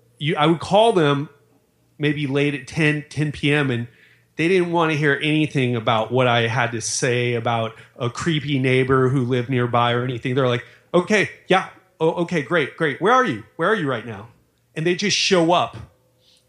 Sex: male